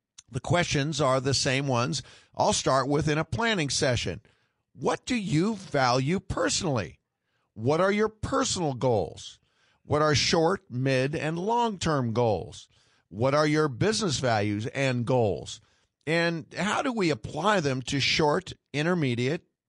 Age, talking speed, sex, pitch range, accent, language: 50-69, 140 wpm, male, 120-160 Hz, American, English